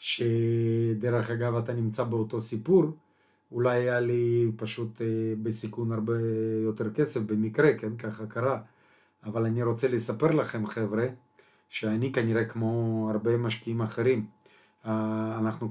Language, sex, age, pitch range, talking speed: Hebrew, male, 30-49, 110-130 Hz, 120 wpm